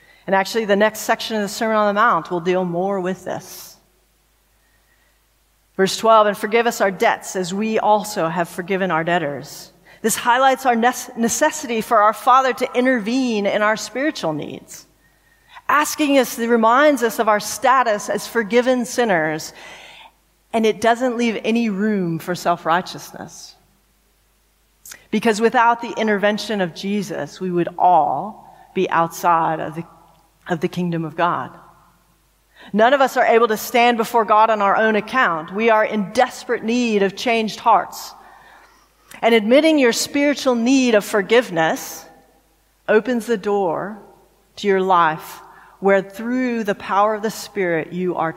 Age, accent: 40-59, American